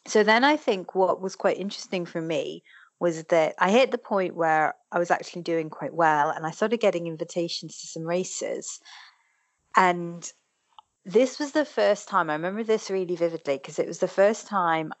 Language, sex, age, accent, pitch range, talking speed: English, female, 30-49, British, 155-195 Hz, 190 wpm